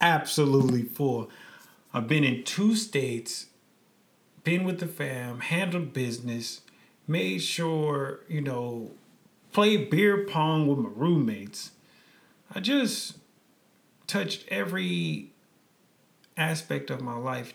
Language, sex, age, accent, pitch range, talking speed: English, male, 30-49, American, 115-145 Hz, 105 wpm